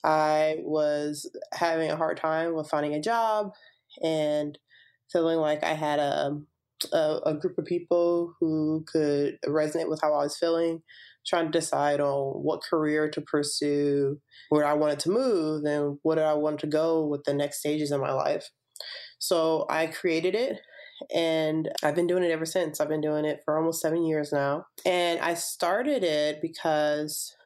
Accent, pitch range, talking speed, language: American, 145-160 Hz, 175 wpm, English